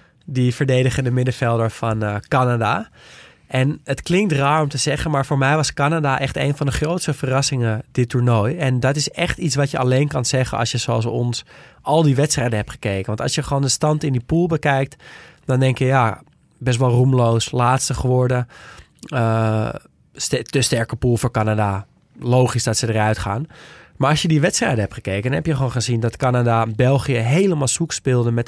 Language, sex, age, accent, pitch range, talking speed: Dutch, male, 20-39, Dutch, 115-140 Hz, 200 wpm